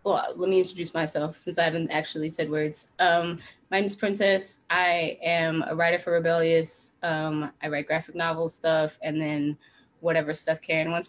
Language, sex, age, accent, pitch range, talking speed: English, female, 20-39, American, 160-195 Hz, 185 wpm